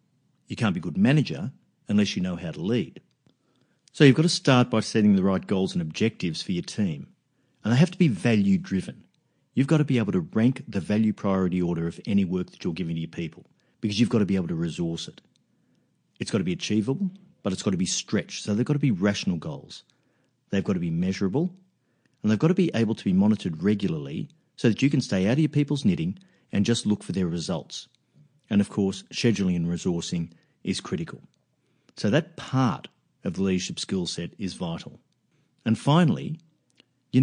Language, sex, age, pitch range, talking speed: English, male, 50-69, 95-145 Hz, 215 wpm